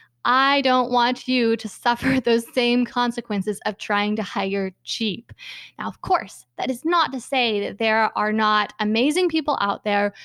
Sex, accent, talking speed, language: female, American, 175 wpm, English